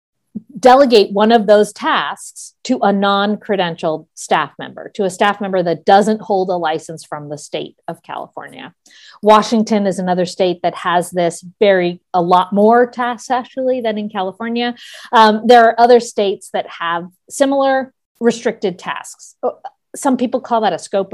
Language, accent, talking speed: English, American, 160 wpm